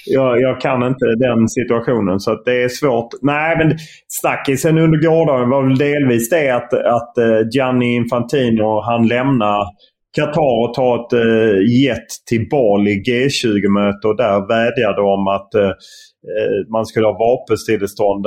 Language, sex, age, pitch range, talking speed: English, male, 30-49, 100-125 Hz, 150 wpm